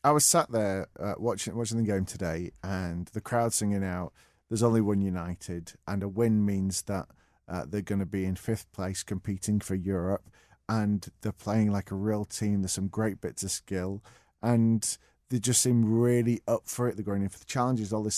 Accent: British